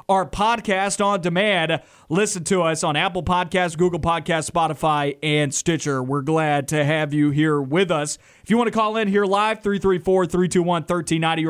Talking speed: 165 wpm